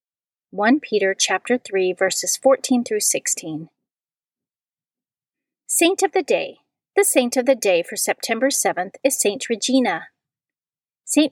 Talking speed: 125 wpm